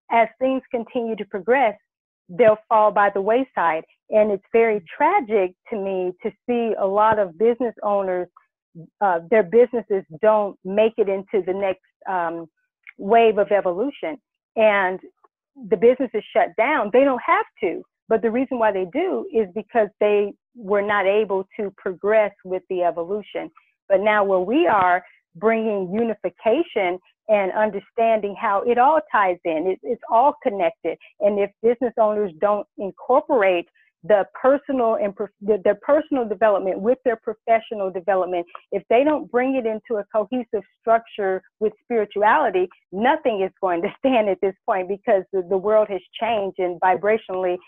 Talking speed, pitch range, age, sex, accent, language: 155 wpm, 195-240 Hz, 40-59, female, American, English